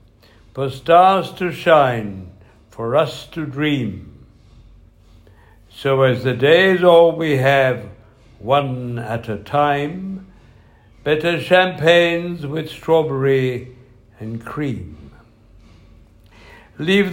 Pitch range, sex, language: 110-165 Hz, male, English